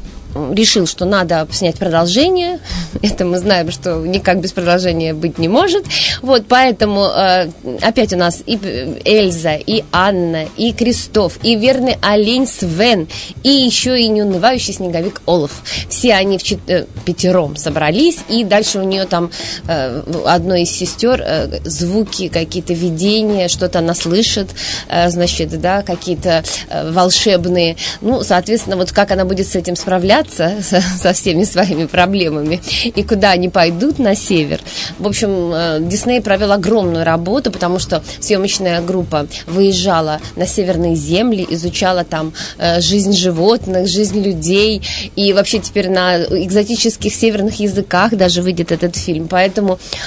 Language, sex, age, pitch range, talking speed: Russian, female, 20-39, 175-215 Hz, 135 wpm